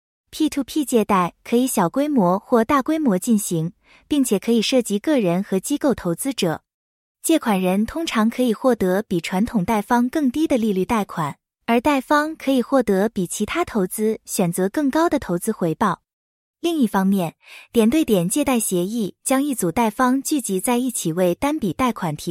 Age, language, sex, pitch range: 20-39, English, female, 190-270 Hz